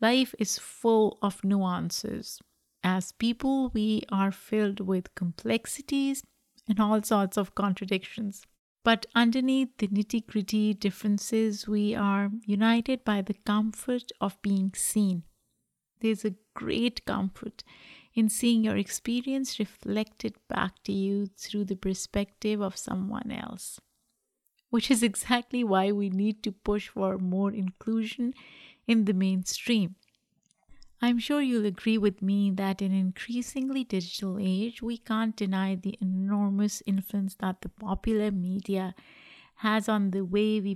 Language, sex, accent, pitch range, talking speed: English, female, Indian, 195-225 Hz, 135 wpm